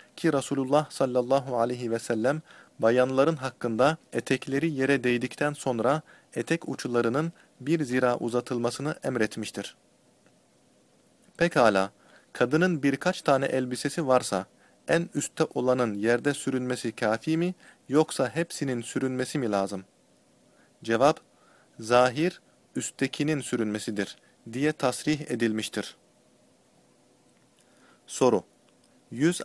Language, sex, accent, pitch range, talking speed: Turkish, male, native, 115-150 Hz, 90 wpm